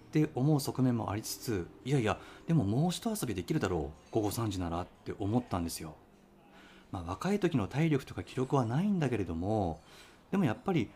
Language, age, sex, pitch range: Japanese, 30-49, male, 95-145 Hz